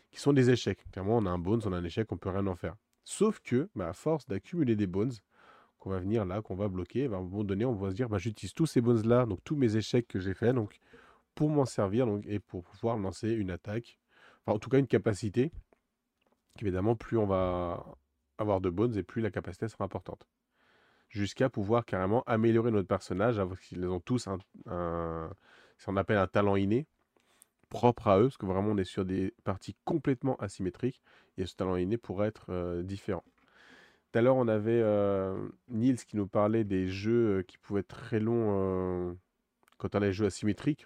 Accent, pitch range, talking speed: French, 95-120 Hz, 220 wpm